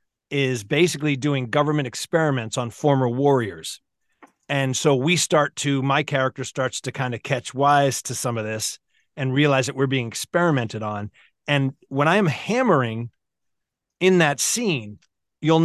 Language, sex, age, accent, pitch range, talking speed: English, male, 40-59, American, 125-160 Hz, 155 wpm